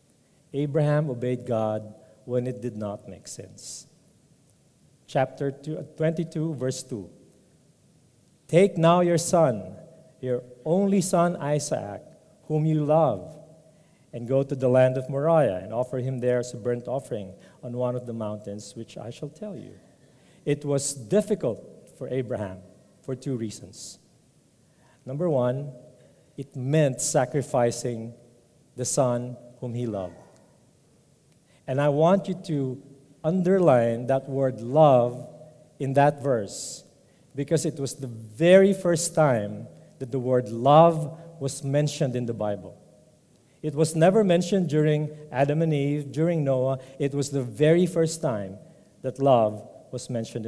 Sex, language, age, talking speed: male, English, 50-69, 135 wpm